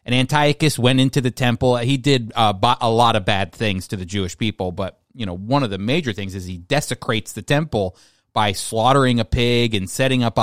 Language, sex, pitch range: English, male, 110-150 Hz